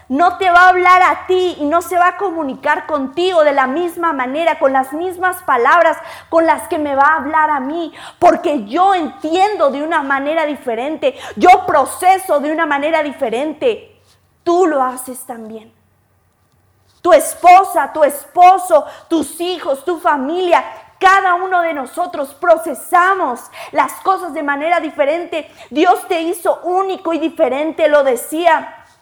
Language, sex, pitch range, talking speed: Spanish, female, 285-355 Hz, 155 wpm